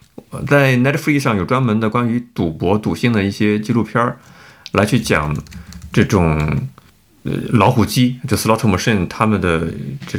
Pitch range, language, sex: 105-140 Hz, Chinese, male